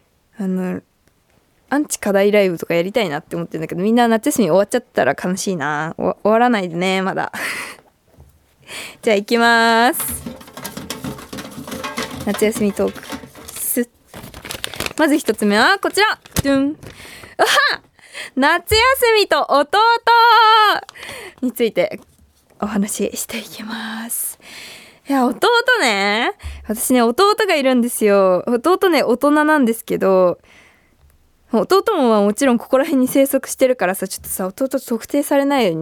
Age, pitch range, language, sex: 20-39, 200-285 Hz, Japanese, female